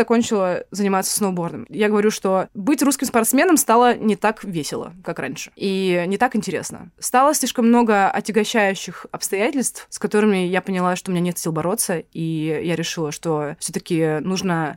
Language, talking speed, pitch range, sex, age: Russian, 165 wpm, 170-220 Hz, female, 20-39